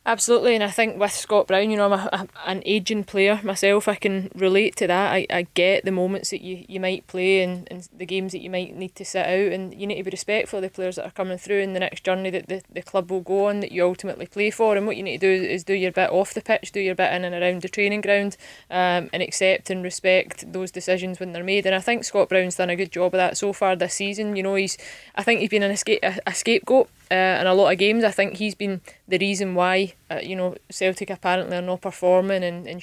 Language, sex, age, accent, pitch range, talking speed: English, female, 20-39, British, 185-205 Hz, 280 wpm